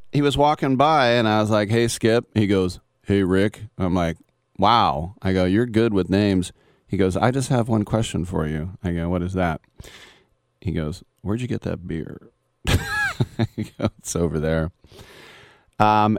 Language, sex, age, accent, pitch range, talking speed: English, male, 30-49, American, 85-105 Hz, 185 wpm